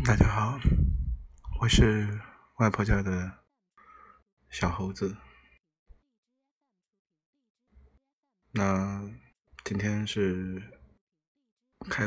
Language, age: Chinese, 20-39